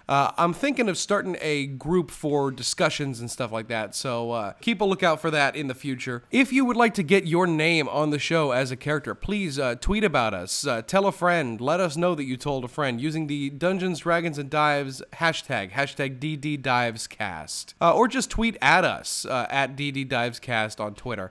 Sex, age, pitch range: male, 30-49, 130-180 Hz